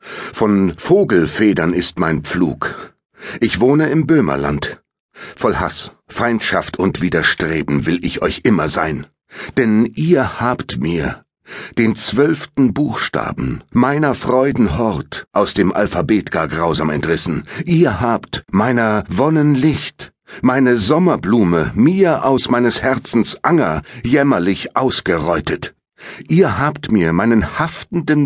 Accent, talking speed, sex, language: German, 110 wpm, male, German